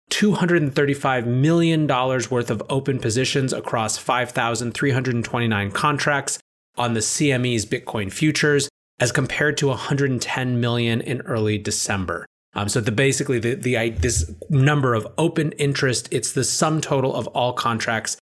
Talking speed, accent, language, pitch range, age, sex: 115 wpm, American, English, 110-140 Hz, 30-49, male